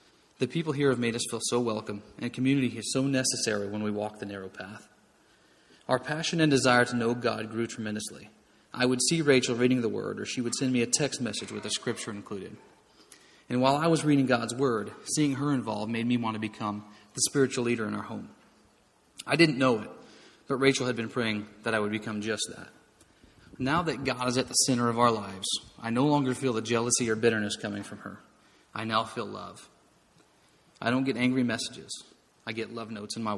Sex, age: male, 30-49